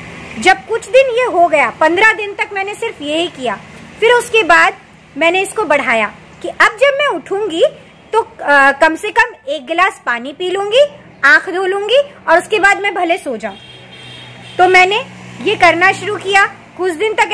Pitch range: 305-405 Hz